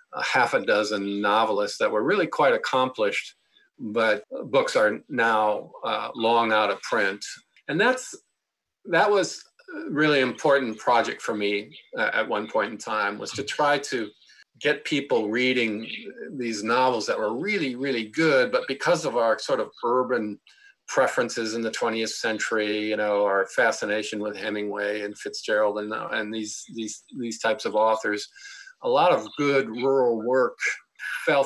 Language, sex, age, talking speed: English, male, 50-69, 160 wpm